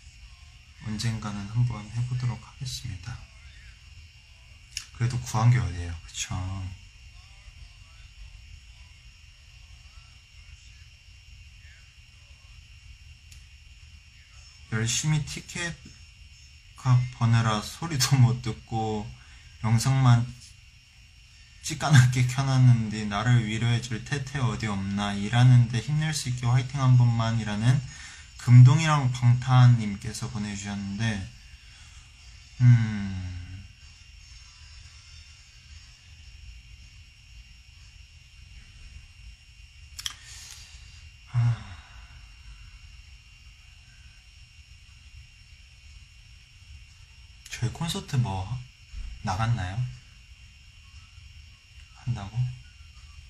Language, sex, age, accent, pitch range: Korean, male, 20-39, native, 80-120 Hz